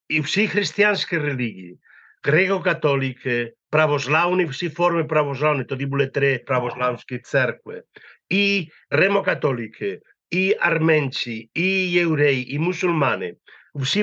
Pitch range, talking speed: 140-180 Hz, 100 wpm